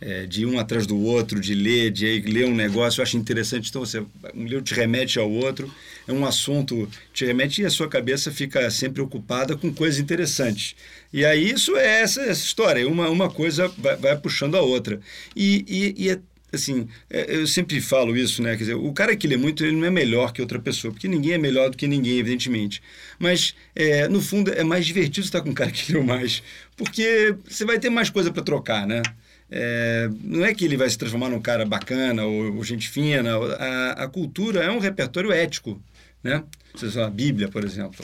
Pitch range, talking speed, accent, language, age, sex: 115-175 Hz, 215 wpm, Brazilian, Portuguese, 40-59, male